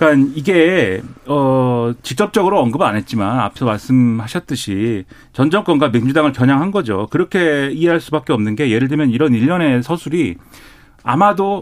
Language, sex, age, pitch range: Korean, male, 40-59, 125-165 Hz